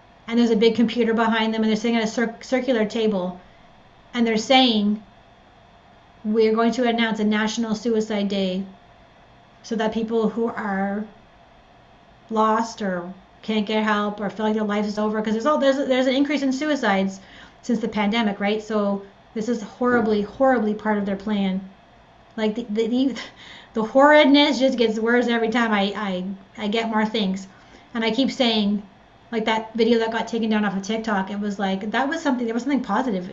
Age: 30-49